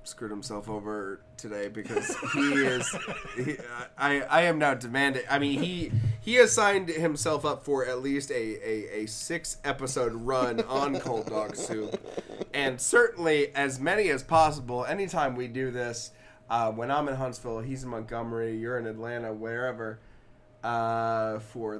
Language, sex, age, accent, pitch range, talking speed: English, male, 20-39, American, 115-140 Hz, 160 wpm